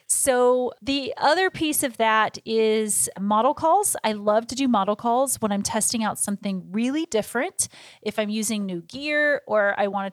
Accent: American